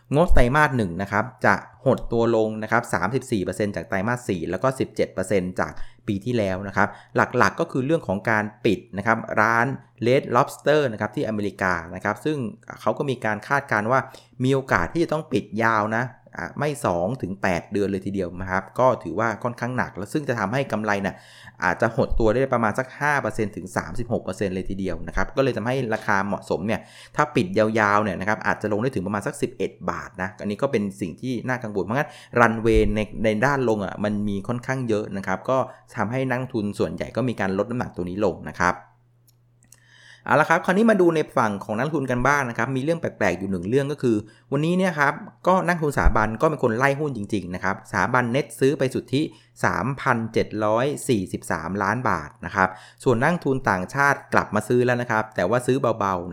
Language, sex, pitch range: Thai, male, 100-130 Hz